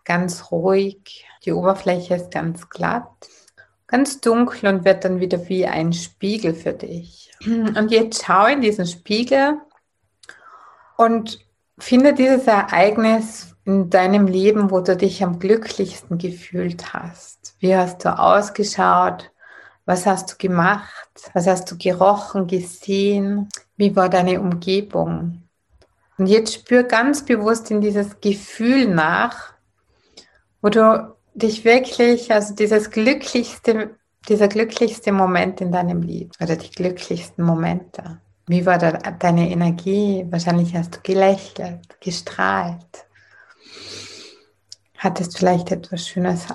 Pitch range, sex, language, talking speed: 180-220 Hz, female, German, 120 wpm